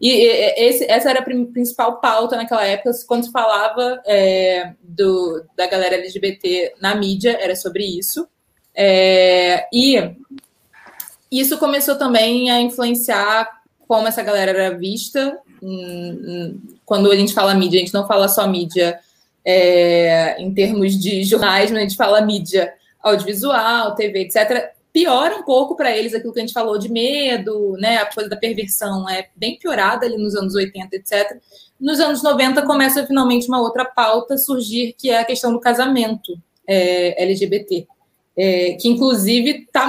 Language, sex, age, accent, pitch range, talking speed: Portuguese, female, 20-39, Brazilian, 195-245 Hz, 145 wpm